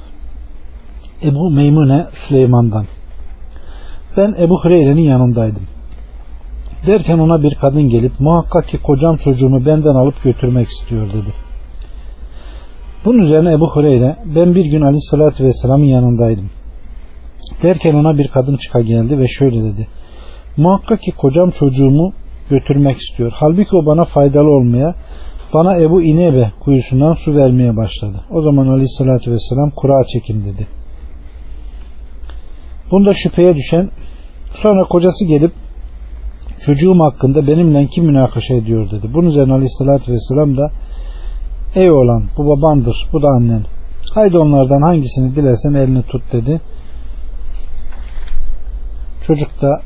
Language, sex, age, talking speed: Turkish, male, 40-59, 120 wpm